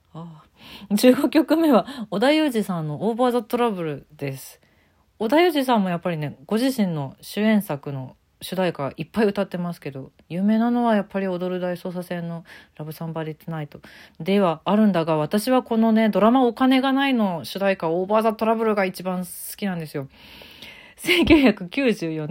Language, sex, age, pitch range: Japanese, female, 40-59, 165-225 Hz